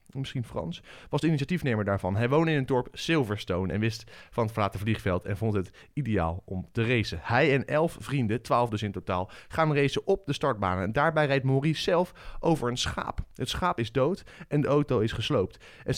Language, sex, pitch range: Dutch, male, 105-140 Hz